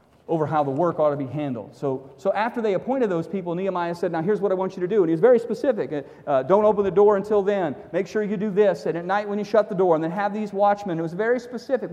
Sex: male